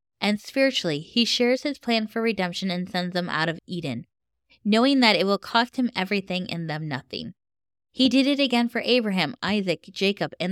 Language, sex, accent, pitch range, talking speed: English, female, American, 180-235 Hz, 190 wpm